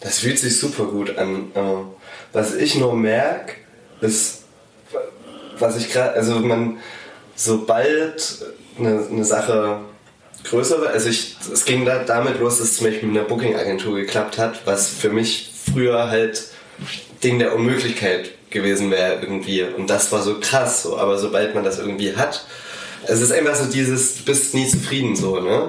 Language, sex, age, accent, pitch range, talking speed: German, male, 20-39, German, 105-125 Hz, 170 wpm